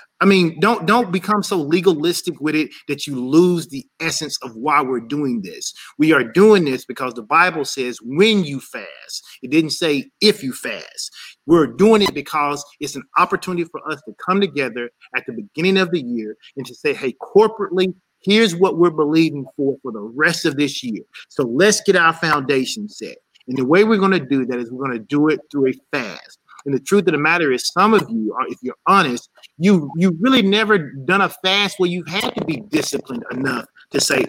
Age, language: 30-49, English